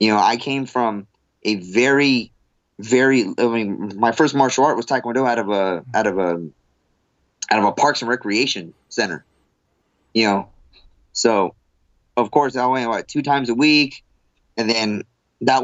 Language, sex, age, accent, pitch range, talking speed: English, male, 20-39, American, 105-130 Hz, 170 wpm